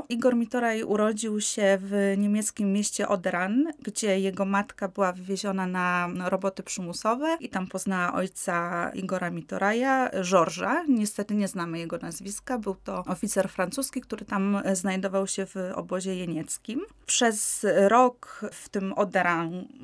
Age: 20-39